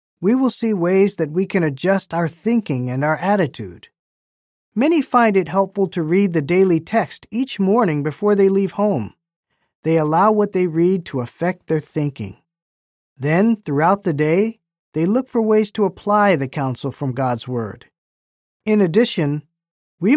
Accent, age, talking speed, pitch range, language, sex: American, 40-59, 165 wpm, 145-205 Hz, English, male